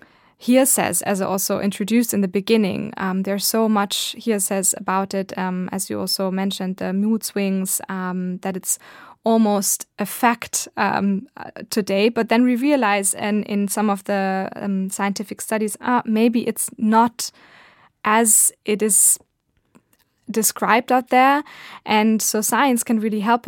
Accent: German